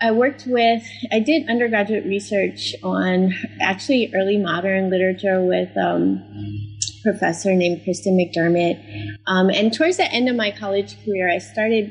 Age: 20-39